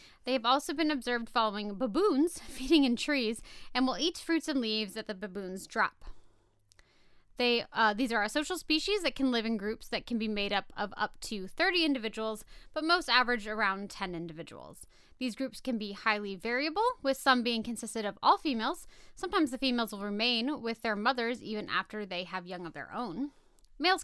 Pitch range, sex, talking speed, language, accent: 215-280 Hz, female, 195 wpm, English, American